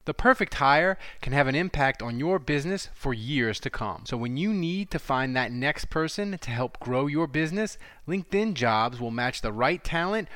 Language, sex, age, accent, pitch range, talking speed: English, male, 30-49, American, 130-170 Hz, 205 wpm